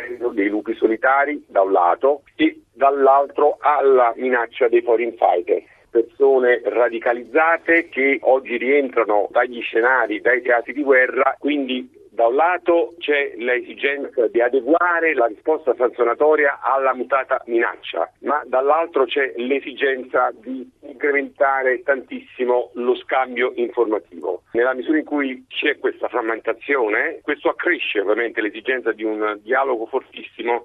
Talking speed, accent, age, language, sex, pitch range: 125 wpm, native, 50-69, Italian, male, 125-190 Hz